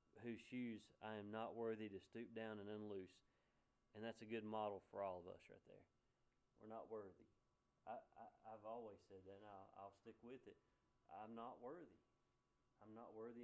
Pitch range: 110-120 Hz